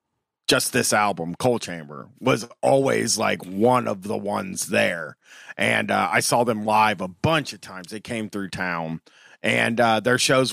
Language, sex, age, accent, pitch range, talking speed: English, male, 40-59, American, 120-165 Hz, 175 wpm